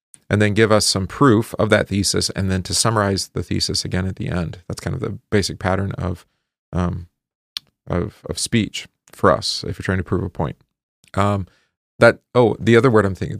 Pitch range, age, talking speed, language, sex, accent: 95-120 Hz, 40-59, 210 wpm, English, male, American